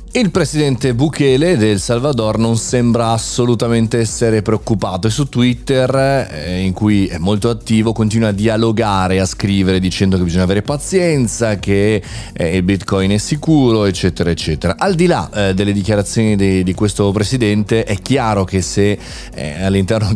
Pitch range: 95-120 Hz